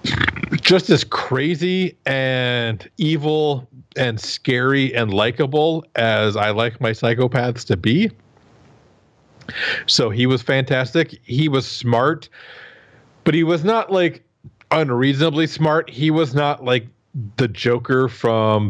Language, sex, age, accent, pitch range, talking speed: English, male, 30-49, American, 115-135 Hz, 120 wpm